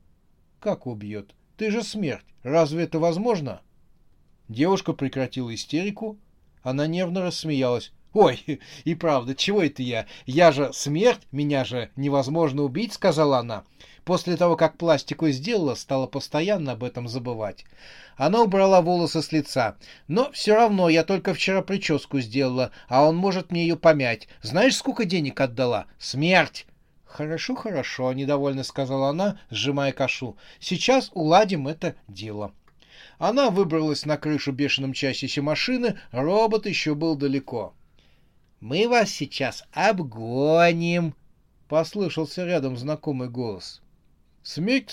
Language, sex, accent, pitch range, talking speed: Russian, male, native, 130-175 Hz, 130 wpm